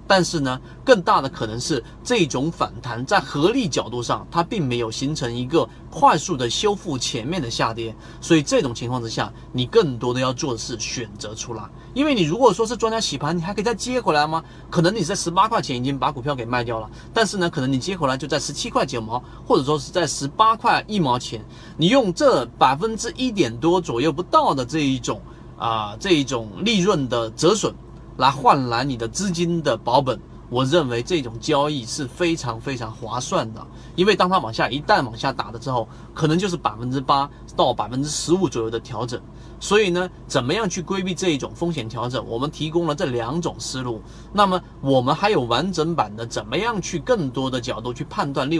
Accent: native